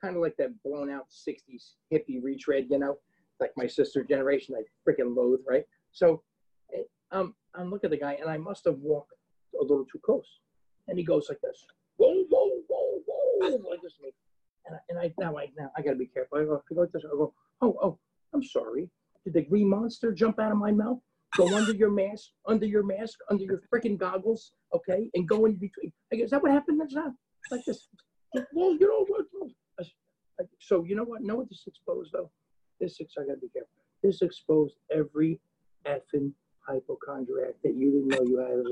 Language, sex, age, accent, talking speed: English, male, 40-59, American, 200 wpm